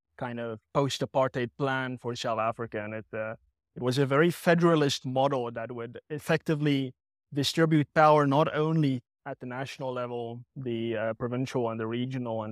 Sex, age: male, 30-49